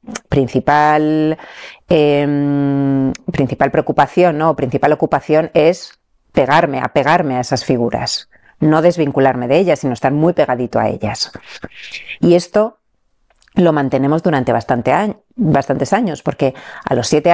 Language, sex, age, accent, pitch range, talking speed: Spanish, female, 40-59, Spanish, 135-175 Hz, 130 wpm